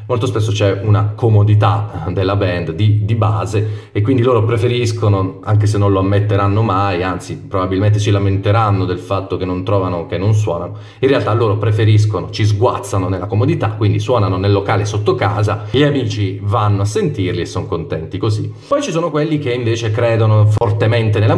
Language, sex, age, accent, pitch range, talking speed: Italian, male, 30-49, native, 100-125 Hz, 180 wpm